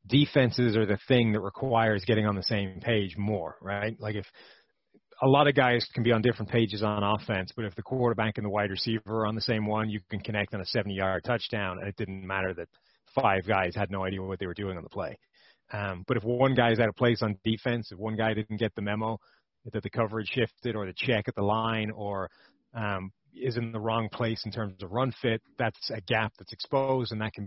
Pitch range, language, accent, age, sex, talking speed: 105-120 Hz, English, American, 30-49, male, 240 wpm